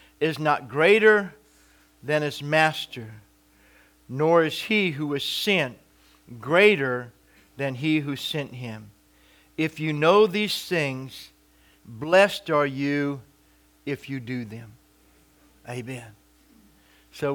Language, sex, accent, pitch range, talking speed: English, male, American, 130-155 Hz, 110 wpm